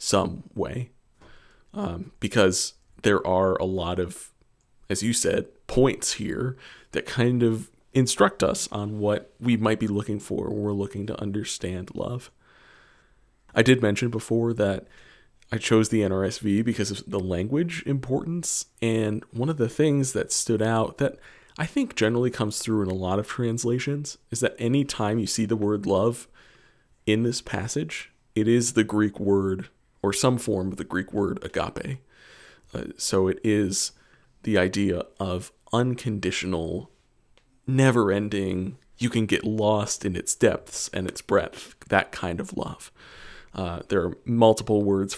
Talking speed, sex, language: 155 wpm, male, English